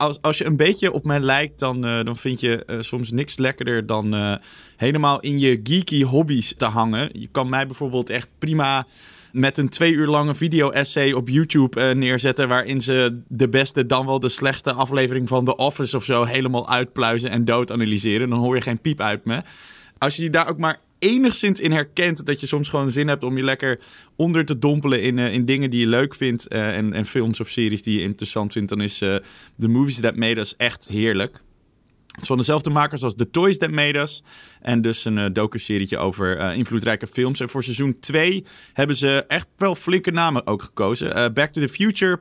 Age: 20-39